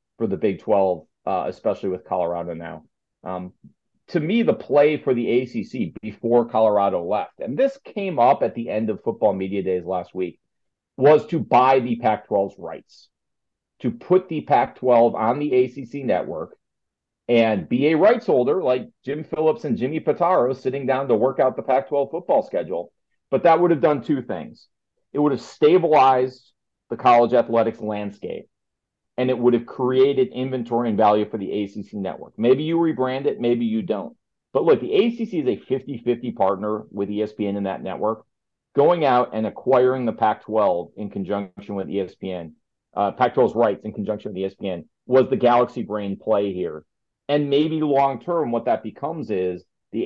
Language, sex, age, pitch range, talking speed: English, male, 40-59, 105-135 Hz, 175 wpm